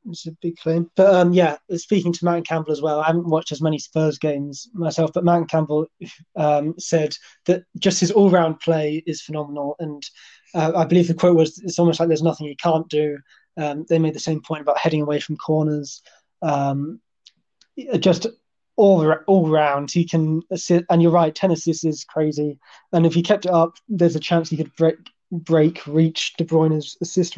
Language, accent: English, British